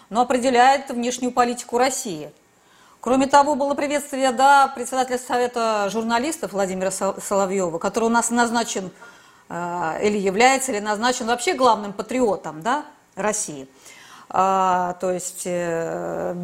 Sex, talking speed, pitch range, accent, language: female, 115 wpm, 205-275 Hz, native, Russian